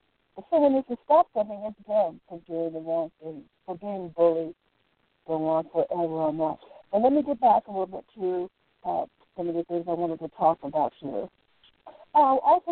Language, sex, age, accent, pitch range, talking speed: English, female, 60-79, American, 180-250 Hz, 210 wpm